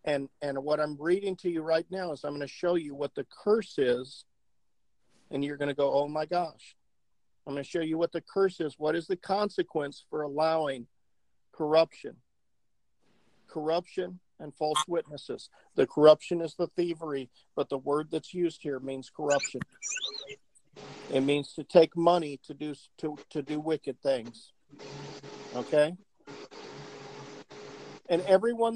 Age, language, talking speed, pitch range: 50-69, English, 160 wpm, 155-220 Hz